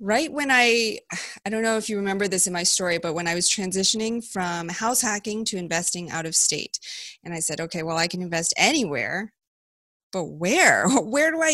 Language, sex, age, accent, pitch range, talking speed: English, female, 30-49, American, 170-210 Hz, 210 wpm